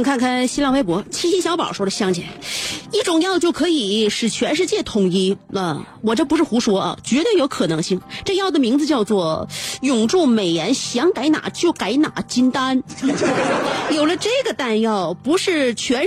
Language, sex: Chinese, female